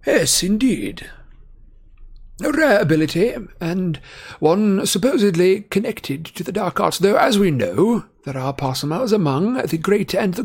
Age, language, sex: 60-79, English, male